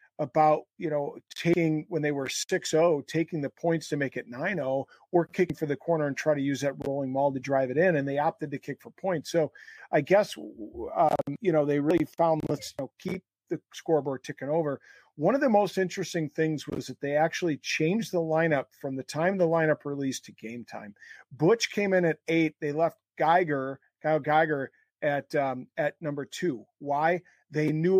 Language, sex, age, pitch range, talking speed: English, male, 40-59, 140-165 Hz, 205 wpm